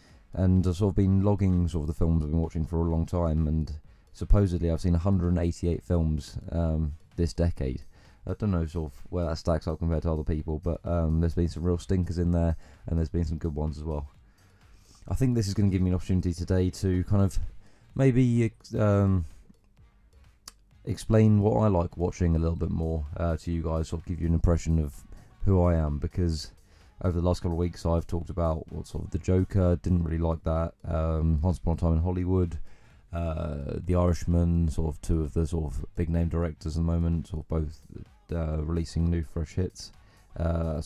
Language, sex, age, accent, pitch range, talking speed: English, male, 20-39, British, 80-95 Hz, 215 wpm